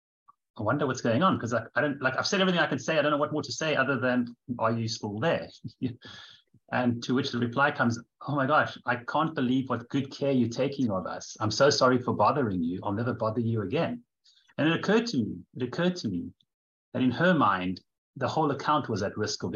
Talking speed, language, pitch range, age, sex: 240 wpm, English, 115-135 Hz, 30-49, male